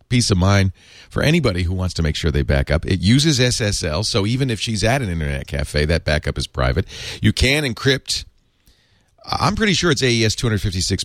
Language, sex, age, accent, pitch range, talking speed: English, male, 40-59, American, 85-125 Hz, 200 wpm